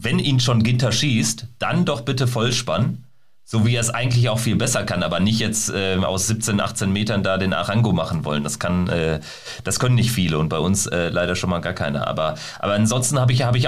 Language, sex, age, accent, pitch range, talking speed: German, male, 30-49, German, 100-125 Hz, 235 wpm